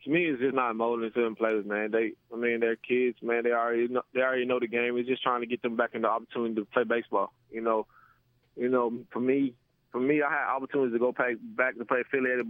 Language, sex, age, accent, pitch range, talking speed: English, male, 20-39, American, 115-125 Hz, 265 wpm